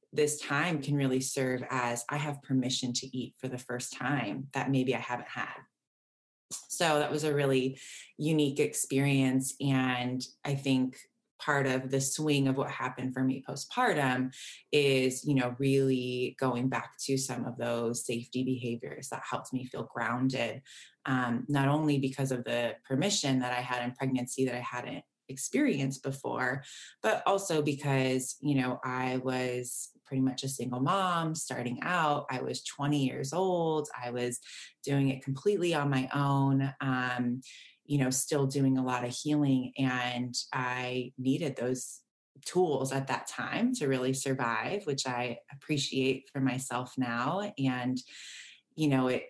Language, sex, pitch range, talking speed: English, female, 125-140 Hz, 160 wpm